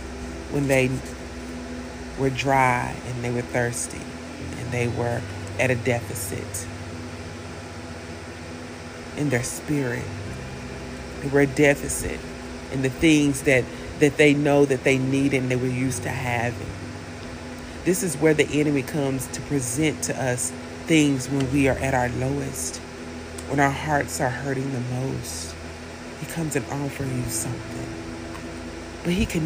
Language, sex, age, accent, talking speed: English, female, 40-59, American, 145 wpm